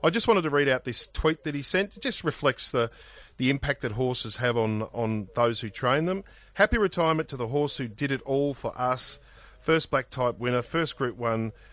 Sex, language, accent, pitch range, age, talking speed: male, English, Australian, 110-135 Hz, 40-59, 225 wpm